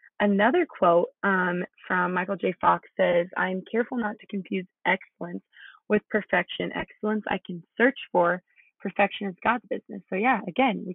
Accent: American